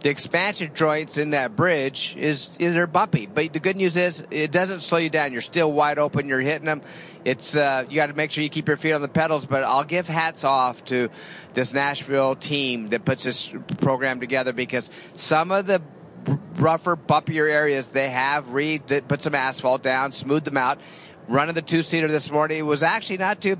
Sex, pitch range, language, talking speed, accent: male, 135-160 Hz, English, 205 wpm, American